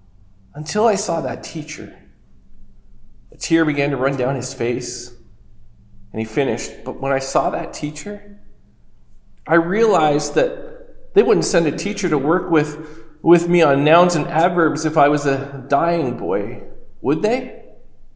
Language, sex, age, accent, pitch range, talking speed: English, male, 40-59, American, 150-240 Hz, 155 wpm